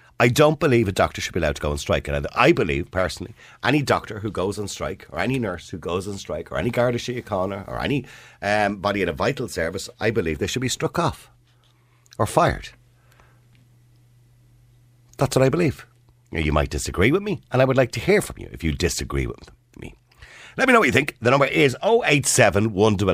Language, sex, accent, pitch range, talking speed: English, male, Irish, 95-125 Hz, 215 wpm